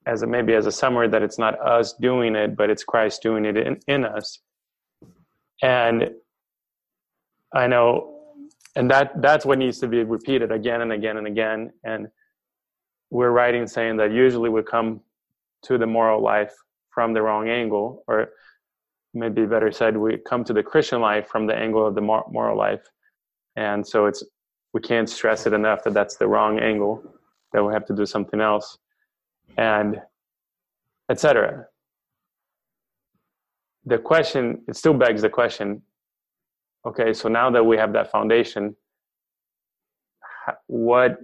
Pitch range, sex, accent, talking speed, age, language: 105-120 Hz, male, American, 155 wpm, 20-39, English